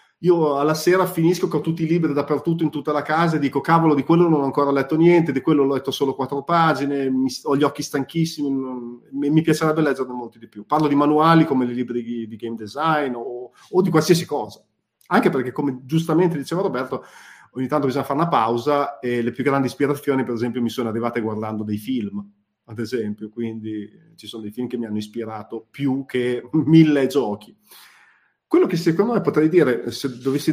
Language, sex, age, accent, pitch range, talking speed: Italian, male, 30-49, native, 125-160 Hz, 205 wpm